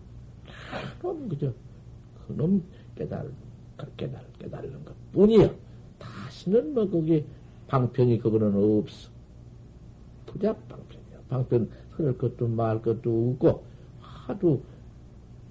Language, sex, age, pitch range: Korean, male, 60-79, 120-170 Hz